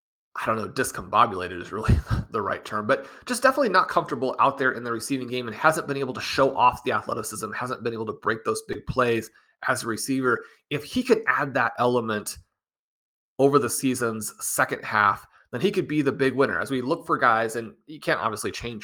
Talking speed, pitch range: 215 wpm, 110-140 Hz